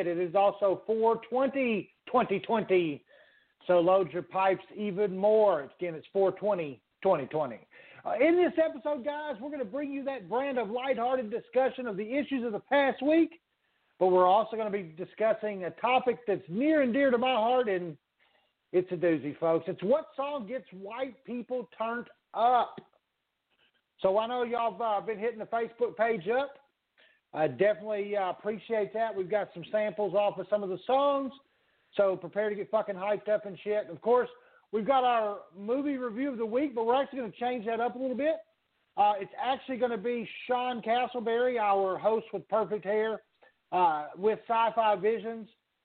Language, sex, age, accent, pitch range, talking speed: English, male, 50-69, American, 195-250 Hz, 185 wpm